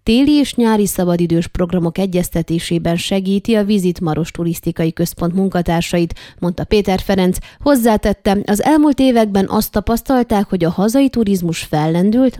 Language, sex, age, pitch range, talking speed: Hungarian, female, 20-39, 175-220 Hz, 130 wpm